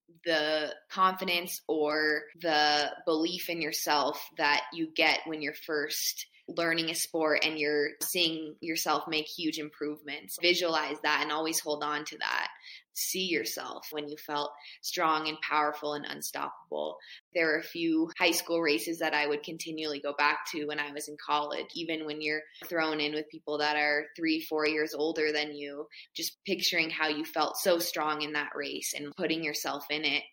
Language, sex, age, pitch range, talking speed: English, female, 20-39, 150-165 Hz, 180 wpm